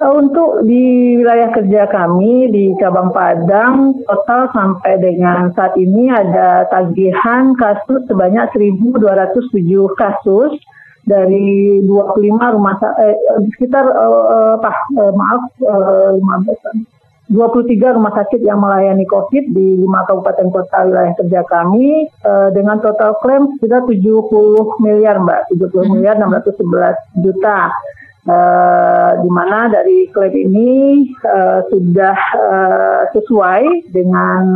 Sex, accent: female, native